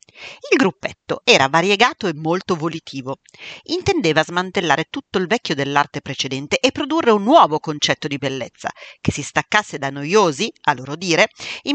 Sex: female